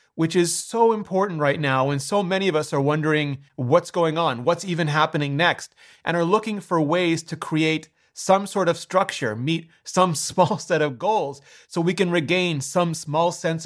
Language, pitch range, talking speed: English, 145-190 Hz, 195 wpm